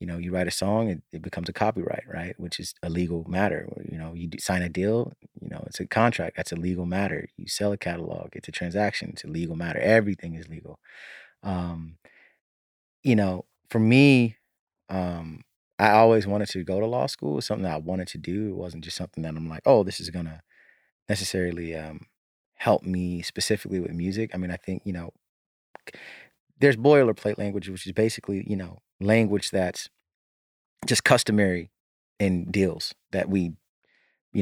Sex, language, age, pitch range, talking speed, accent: male, English, 30-49, 85-105 Hz, 190 wpm, American